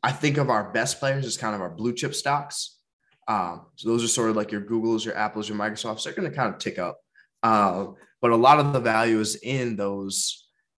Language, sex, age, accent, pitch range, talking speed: English, male, 20-39, American, 105-130 Hz, 240 wpm